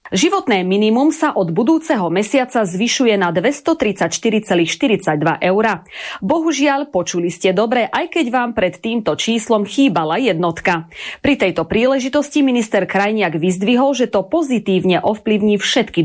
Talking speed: 125 wpm